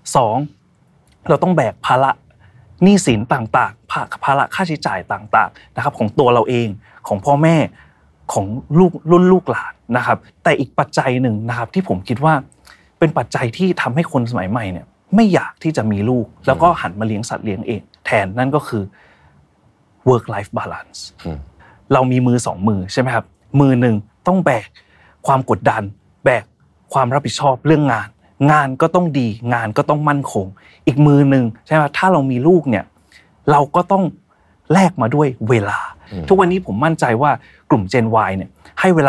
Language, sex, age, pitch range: Thai, male, 30-49, 110-155 Hz